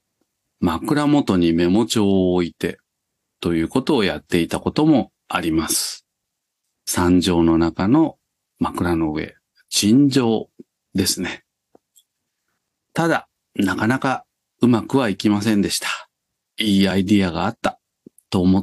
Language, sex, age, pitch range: Japanese, male, 40-59, 90-135 Hz